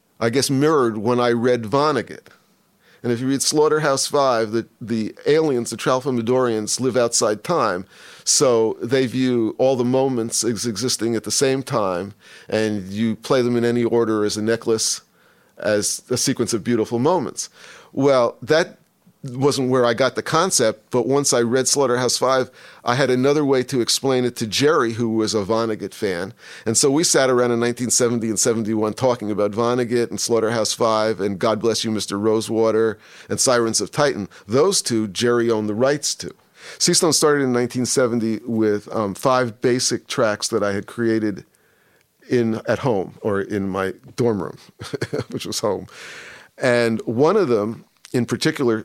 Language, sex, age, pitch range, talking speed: English, male, 50-69, 110-130 Hz, 175 wpm